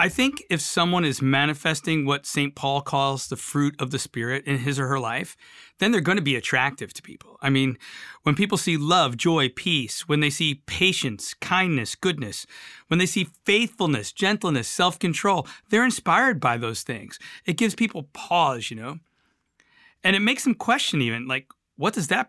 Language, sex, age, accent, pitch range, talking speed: English, male, 40-59, American, 130-185 Hz, 185 wpm